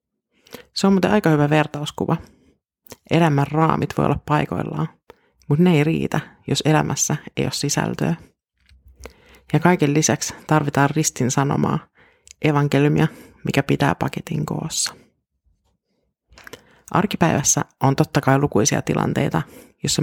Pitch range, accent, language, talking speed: 140-160 Hz, native, Finnish, 115 wpm